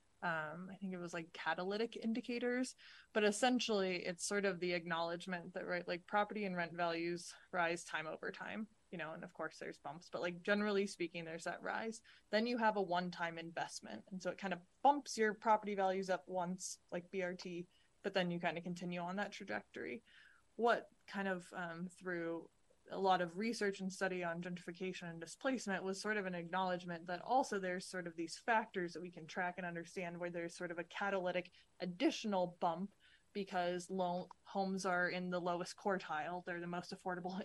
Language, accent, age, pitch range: English, American, 20-39, 170-195 Hz